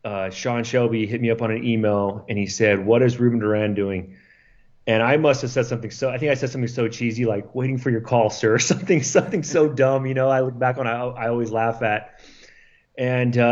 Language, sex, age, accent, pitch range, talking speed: English, male, 30-49, American, 105-125 Hz, 240 wpm